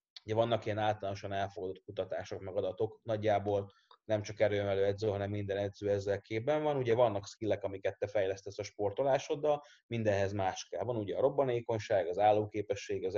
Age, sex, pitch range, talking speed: 30-49, male, 100-130 Hz, 160 wpm